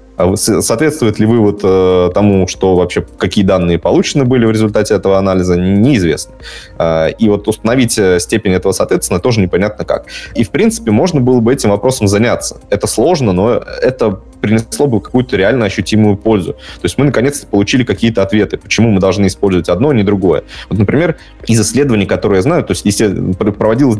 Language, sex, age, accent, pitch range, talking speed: Russian, male, 20-39, native, 90-115 Hz, 175 wpm